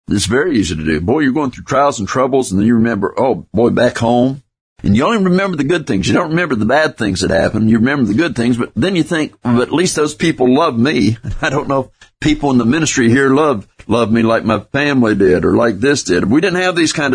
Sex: male